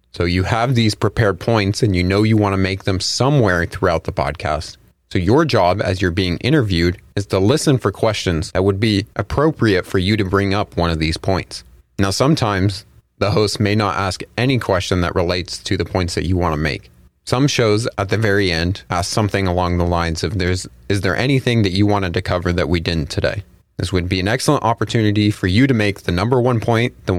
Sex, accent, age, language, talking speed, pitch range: male, American, 30-49, English, 225 wpm, 90-110 Hz